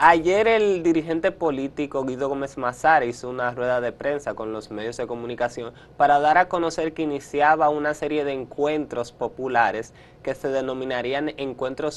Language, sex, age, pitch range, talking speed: Spanish, male, 20-39, 125-160 Hz, 160 wpm